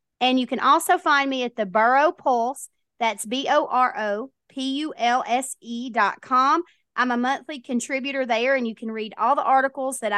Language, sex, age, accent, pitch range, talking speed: English, female, 30-49, American, 215-270 Hz, 155 wpm